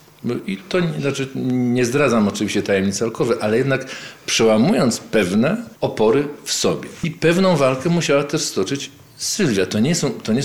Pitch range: 95-135 Hz